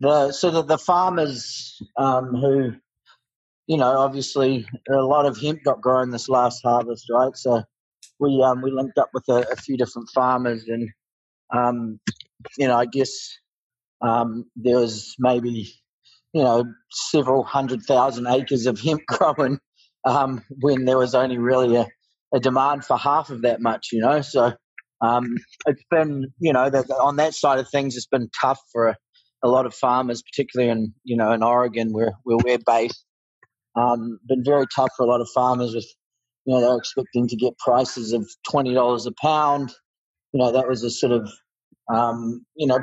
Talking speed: 180 wpm